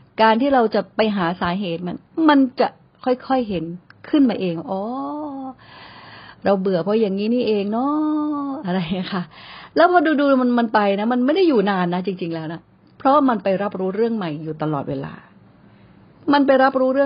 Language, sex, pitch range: Thai, female, 170-230 Hz